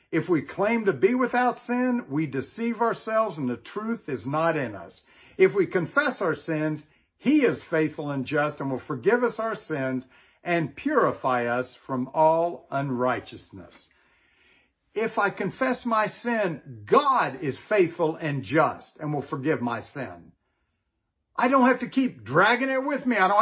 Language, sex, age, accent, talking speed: English, male, 60-79, American, 165 wpm